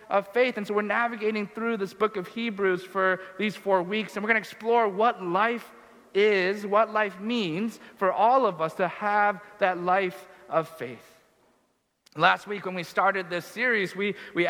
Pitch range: 185-225 Hz